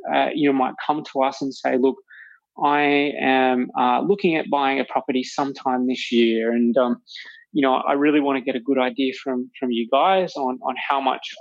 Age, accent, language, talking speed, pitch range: 20-39, Australian, English, 215 wpm, 125-150 Hz